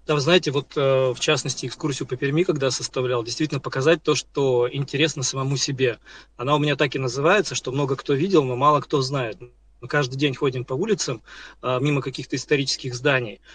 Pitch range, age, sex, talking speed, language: 125-150 Hz, 20-39, male, 195 wpm, Russian